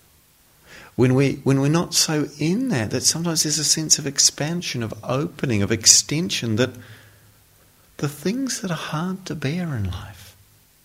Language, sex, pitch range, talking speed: English, male, 105-145 Hz, 160 wpm